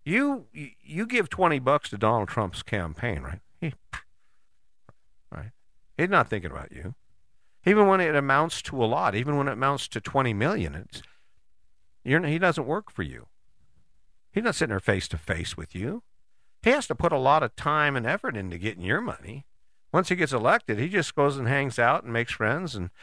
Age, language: 50-69, English